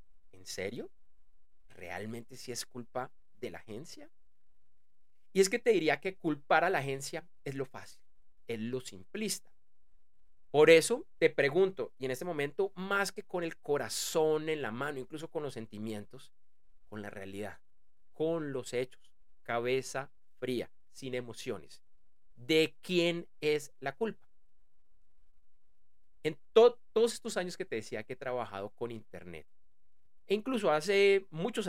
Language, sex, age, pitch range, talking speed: Spanish, male, 30-49, 110-180 Hz, 150 wpm